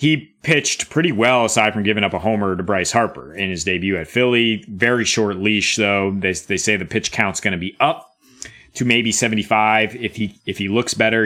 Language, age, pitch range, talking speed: English, 30-49, 95-115 Hz, 220 wpm